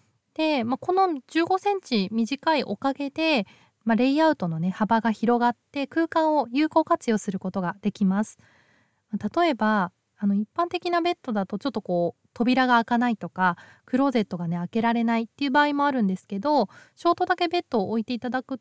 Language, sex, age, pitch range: Japanese, female, 20-39, 200-305 Hz